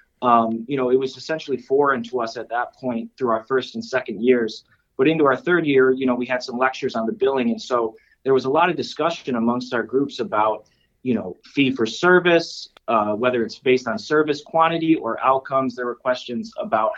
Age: 20-39